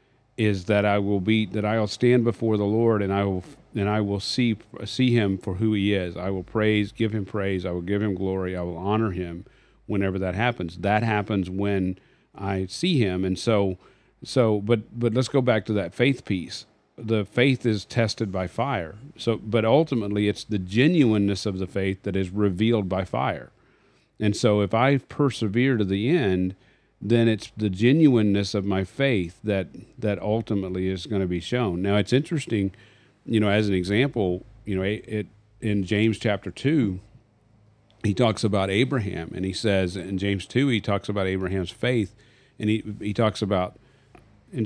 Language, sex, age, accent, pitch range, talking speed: English, male, 40-59, American, 95-115 Hz, 190 wpm